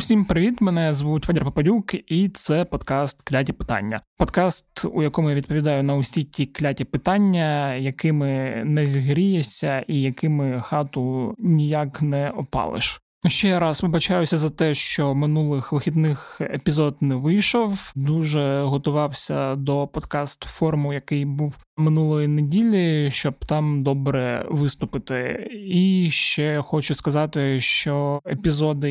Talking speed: 120 wpm